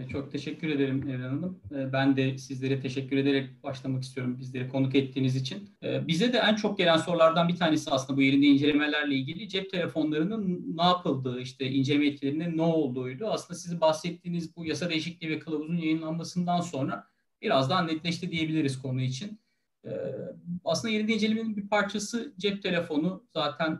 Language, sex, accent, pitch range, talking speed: Turkish, male, native, 140-185 Hz, 155 wpm